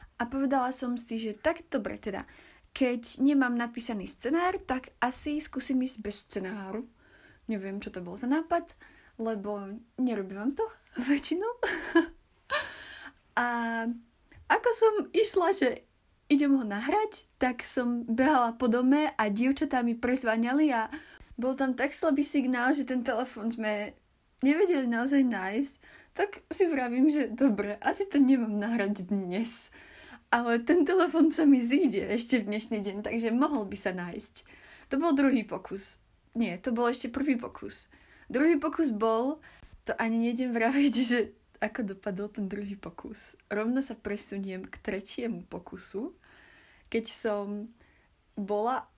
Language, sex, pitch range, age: Slovak, female, 220-280 Hz, 30-49